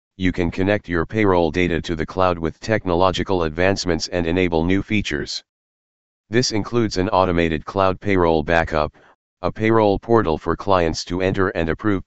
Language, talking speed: English, 160 wpm